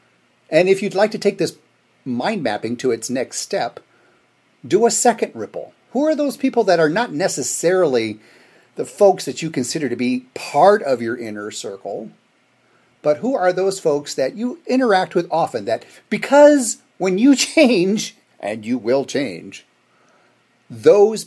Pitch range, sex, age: 130-215 Hz, male, 40-59